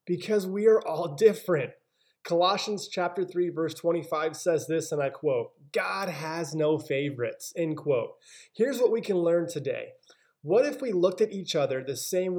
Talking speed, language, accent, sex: 175 wpm, English, American, male